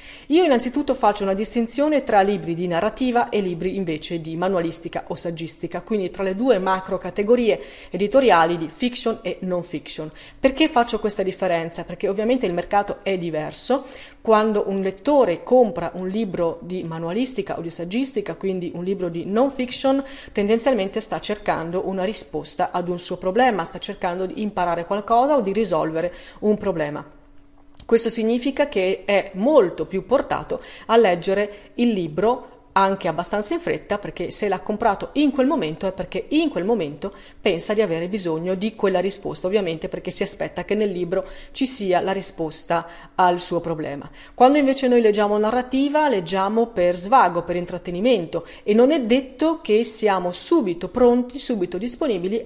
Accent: native